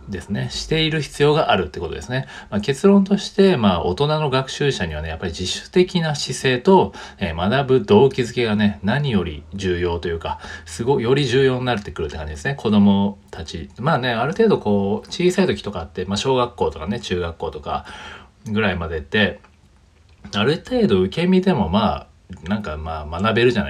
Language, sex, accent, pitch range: Japanese, male, native, 90-135 Hz